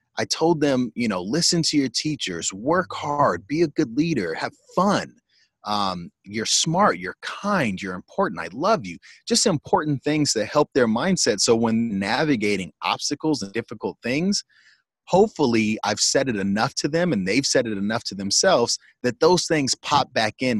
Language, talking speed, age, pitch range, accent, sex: English, 180 wpm, 30-49, 100-150 Hz, American, male